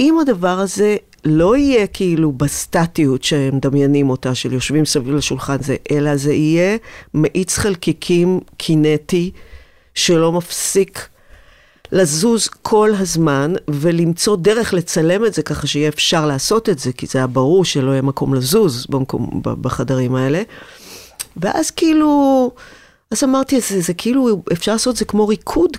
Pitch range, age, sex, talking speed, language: 140-190 Hz, 40-59, female, 145 wpm, Hebrew